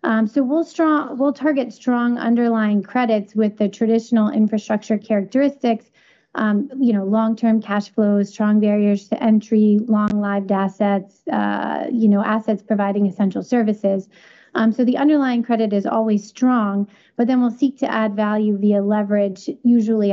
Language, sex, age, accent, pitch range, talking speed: English, female, 30-49, American, 205-240 Hz, 150 wpm